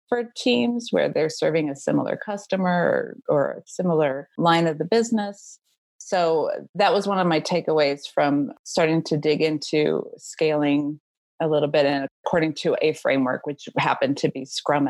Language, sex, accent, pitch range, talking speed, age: English, female, American, 145-185 Hz, 165 wpm, 30-49